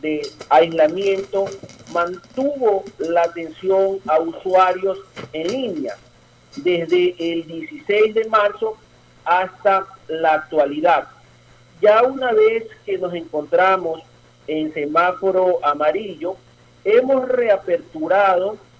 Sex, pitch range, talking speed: male, 165-205 Hz, 90 wpm